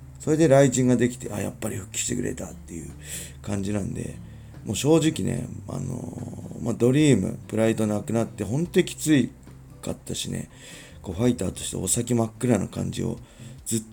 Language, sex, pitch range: Japanese, male, 100-130 Hz